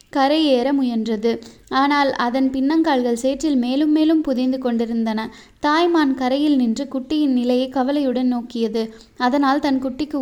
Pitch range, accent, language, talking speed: 245-285 Hz, native, Tamil, 115 wpm